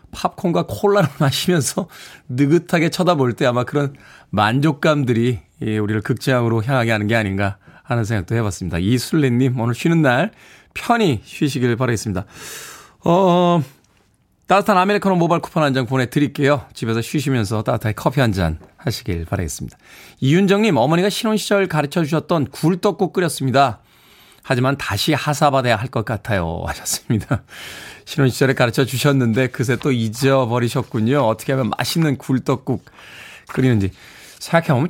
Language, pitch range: Korean, 115-170 Hz